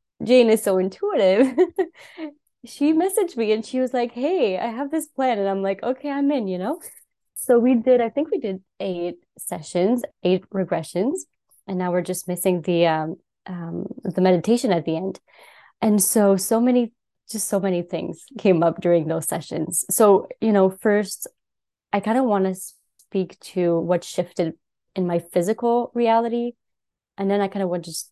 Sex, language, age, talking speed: female, English, 20-39, 185 wpm